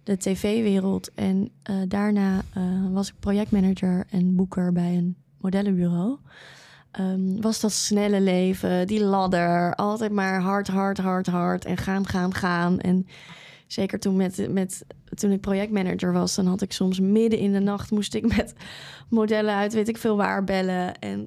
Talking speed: 160 wpm